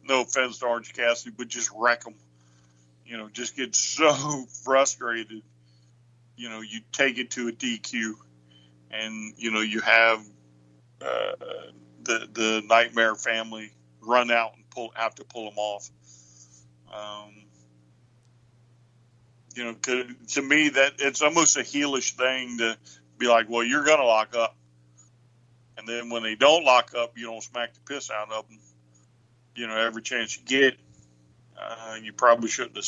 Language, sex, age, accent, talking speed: English, male, 50-69, American, 160 wpm